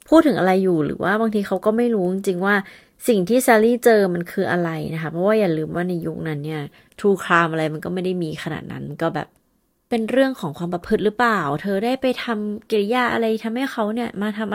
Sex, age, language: female, 30-49, Thai